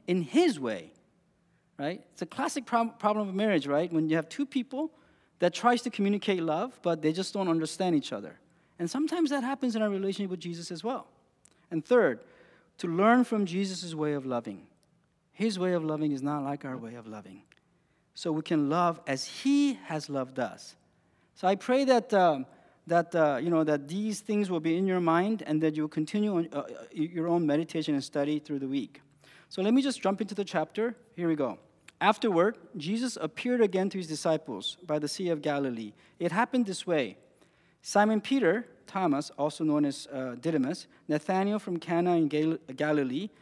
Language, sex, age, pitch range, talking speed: English, male, 40-59, 155-205 Hz, 185 wpm